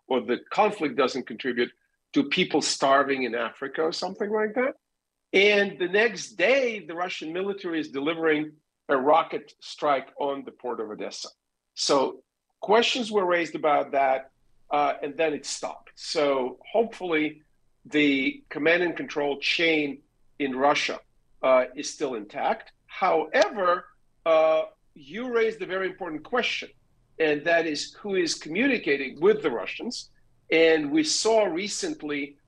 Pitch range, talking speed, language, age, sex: 145-205 Hz, 140 wpm, English, 50-69, male